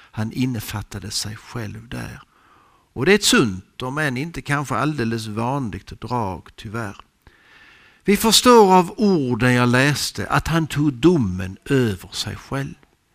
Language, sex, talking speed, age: Swedish, male, 140 wpm, 60-79